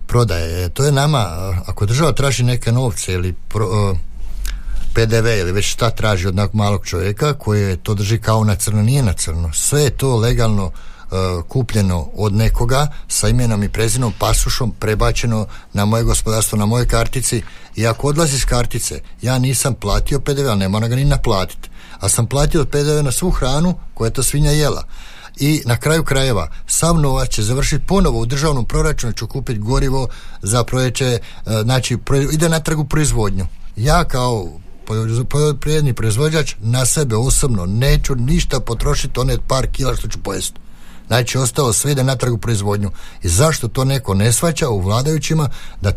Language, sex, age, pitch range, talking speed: Croatian, male, 60-79, 105-140 Hz, 170 wpm